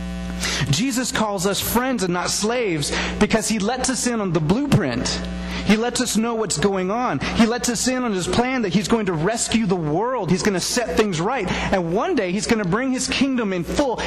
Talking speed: 225 wpm